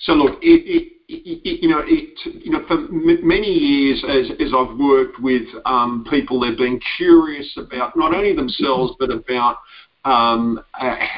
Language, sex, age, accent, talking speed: English, male, 50-69, Australian, 170 wpm